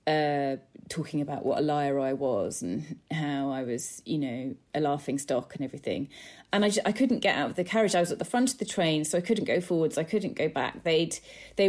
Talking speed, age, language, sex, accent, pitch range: 245 wpm, 30-49, English, female, British, 155-185 Hz